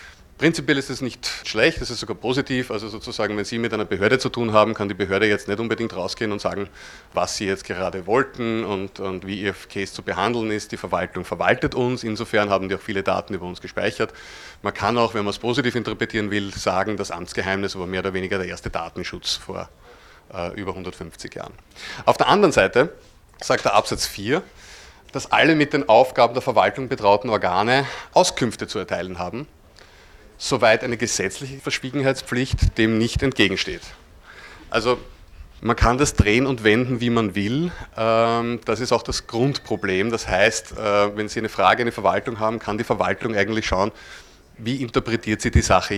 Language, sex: German, male